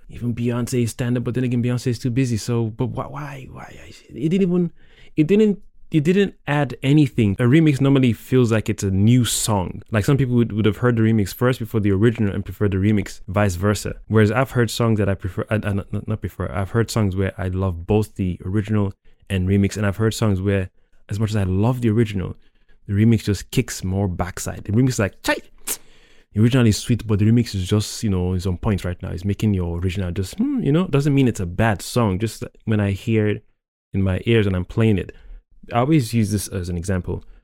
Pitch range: 100-120 Hz